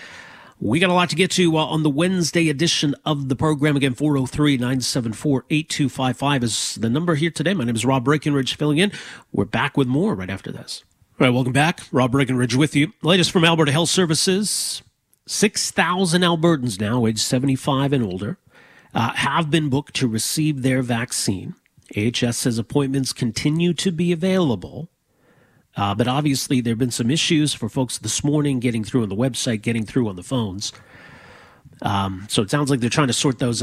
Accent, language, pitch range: American, English, 120-155 Hz